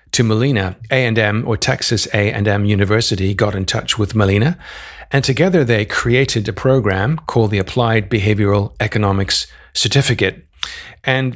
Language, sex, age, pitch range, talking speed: English, male, 40-59, 105-125 Hz, 130 wpm